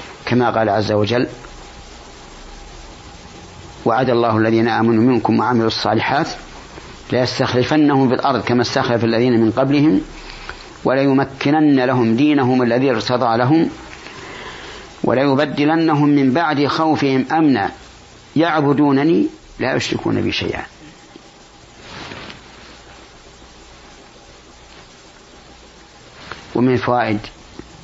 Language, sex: Arabic, male